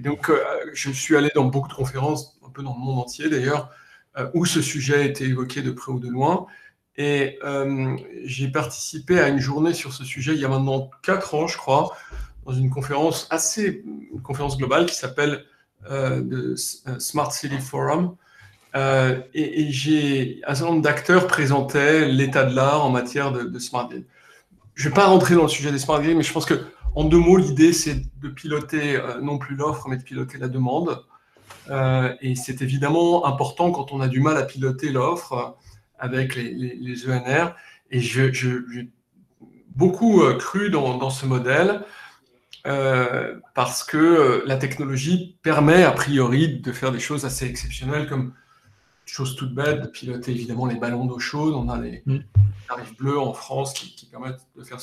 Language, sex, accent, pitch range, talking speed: French, male, French, 130-150 Hz, 190 wpm